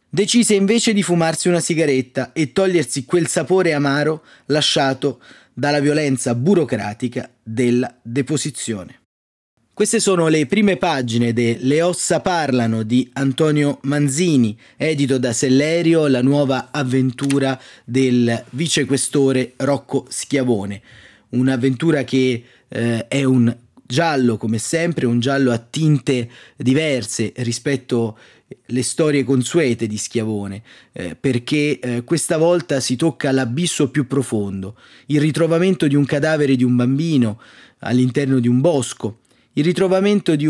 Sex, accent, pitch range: male, native, 125-160 Hz